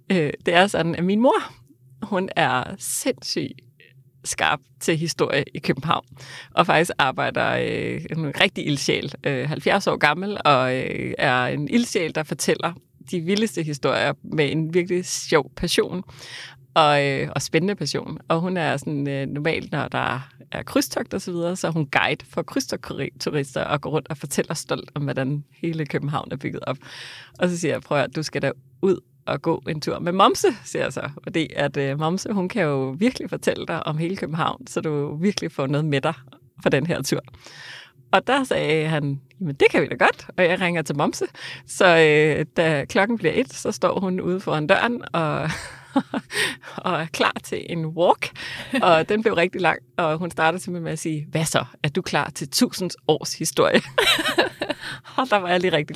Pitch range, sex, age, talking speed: 145-180 Hz, female, 30-49, 195 wpm